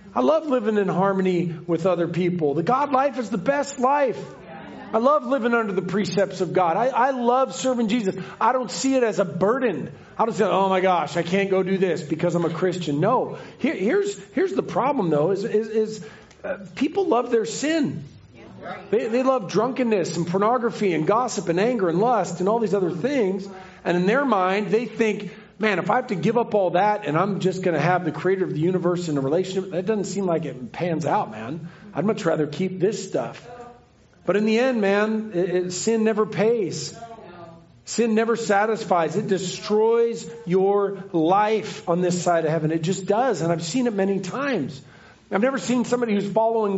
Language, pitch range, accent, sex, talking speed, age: English, 175-220 Hz, American, male, 205 wpm, 40-59